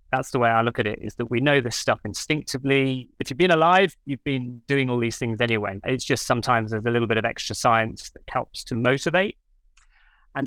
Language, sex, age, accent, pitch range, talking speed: English, male, 30-49, British, 115-150 Hz, 230 wpm